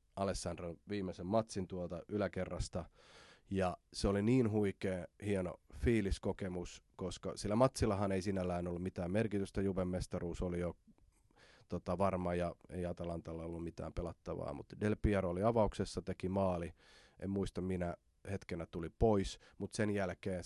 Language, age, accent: Finnish, 30-49, native